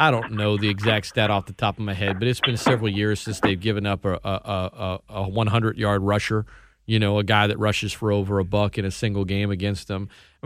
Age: 40-59